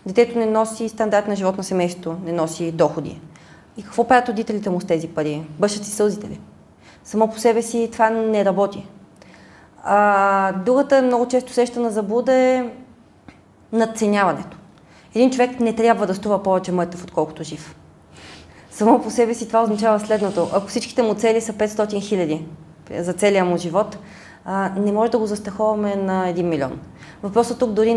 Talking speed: 170 wpm